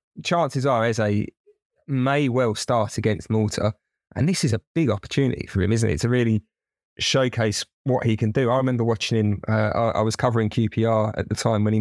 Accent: British